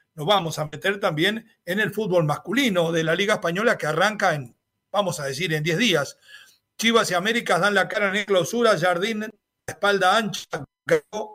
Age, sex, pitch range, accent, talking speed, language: 40-59, male, 165-220 Hz, Argentinian, 175 wpm, Spanish